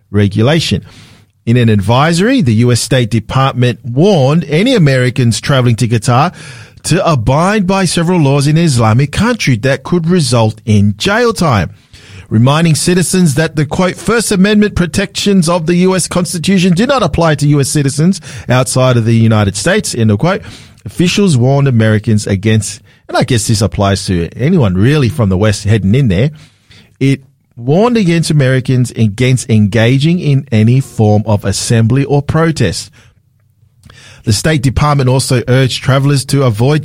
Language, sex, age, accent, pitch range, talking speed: English, male, 40-59, Australian, 110-160 Hz, 155 wpm